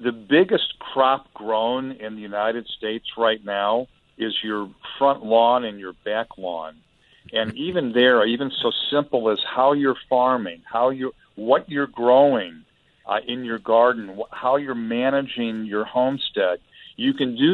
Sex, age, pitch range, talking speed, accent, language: male, 50-69, 110-130 Hz, 155 wpm, American, English